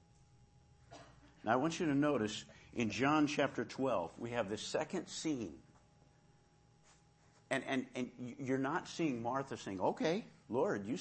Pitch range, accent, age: 115-170 Hz, American, 50-69